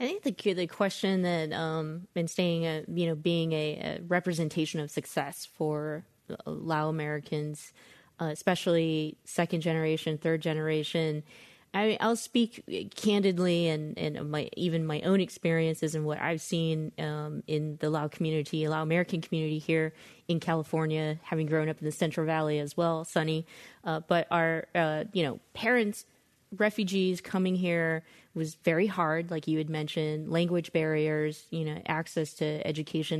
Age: 20-39